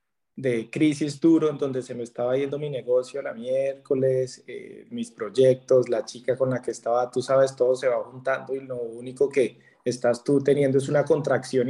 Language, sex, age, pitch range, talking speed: Spanish, male, 20-39, 135-170 Hz, 195 wpm